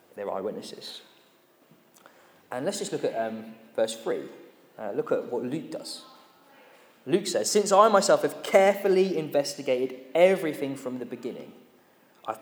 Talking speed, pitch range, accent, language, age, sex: 140 wpm, 125-195 Hz, British, English, 20-39, male